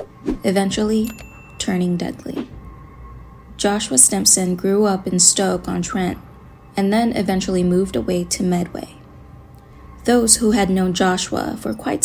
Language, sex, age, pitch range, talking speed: English, female, 20-39, 170-205 Hz, 125 wpm